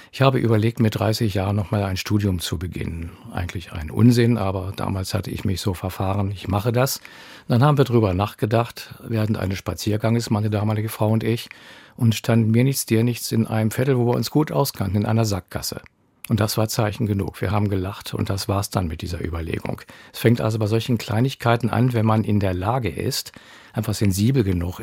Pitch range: 100-115 Hz